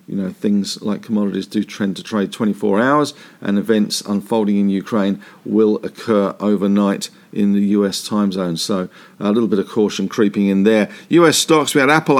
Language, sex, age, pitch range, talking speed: English, male, 50-69, 105-130 Hz, 185 wpm